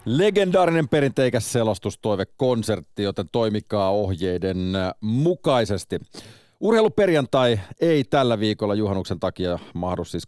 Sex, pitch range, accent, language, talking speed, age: male, 90-120 Hz, native, Finnish, 90 wpm, 40-59